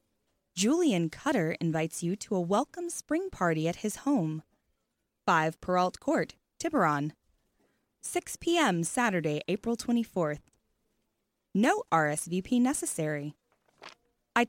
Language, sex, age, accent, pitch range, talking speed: English, female, 20-39, American, 165-250 Hz, 105 wpm